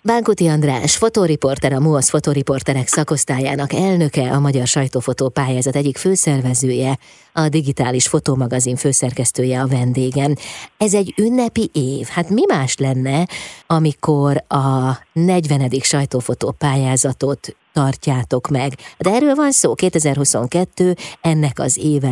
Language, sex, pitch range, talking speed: Hungarian, female, 135-160 Hz, 110 wpm